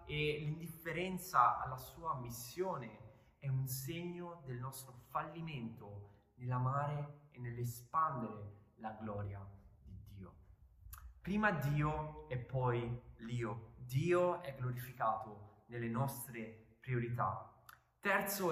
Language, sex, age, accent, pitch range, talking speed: Italian, male, 20-39, native, 115-155 Hz, 95 wpm